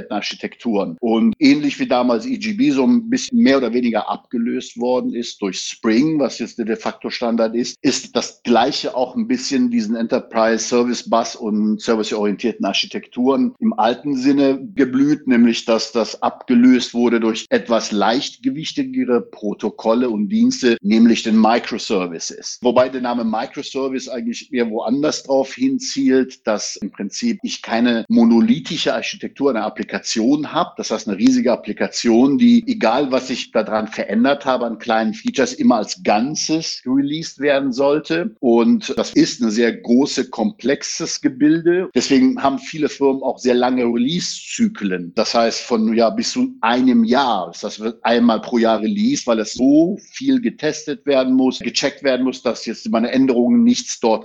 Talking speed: 155 wpm